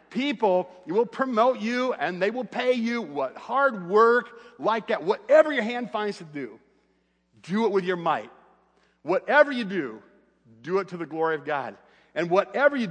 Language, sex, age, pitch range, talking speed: English, male, 50-69, 175-240 Hz, 180 wpm